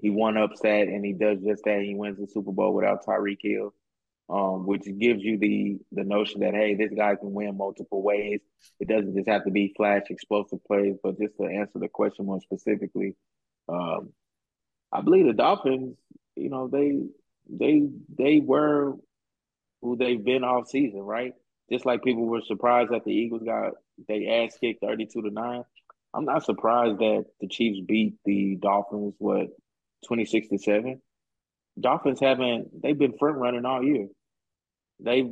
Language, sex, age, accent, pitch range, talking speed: English, male, 20-39, American, 100-120 Hz, 175 wpm